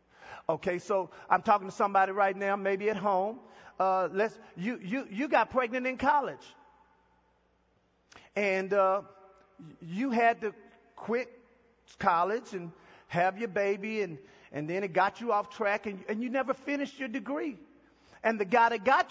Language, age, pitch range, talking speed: English, 40-59, 200-290 Hz, 160 wpm